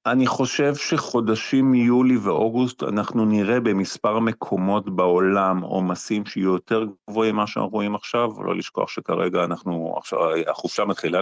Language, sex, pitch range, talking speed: Hebrew, male, 95-125 Hz, 130 wpm